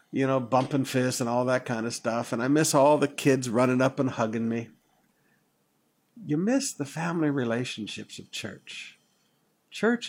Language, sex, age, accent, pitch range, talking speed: English, male, 60-79, American, 120-155 Hz, 170 wpm